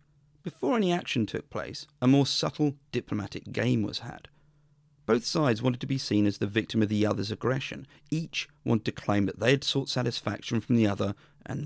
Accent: British